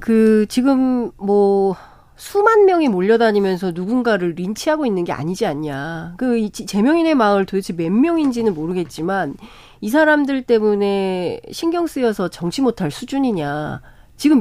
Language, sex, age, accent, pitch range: Korean, female, 40-59, native, 185-265 Hz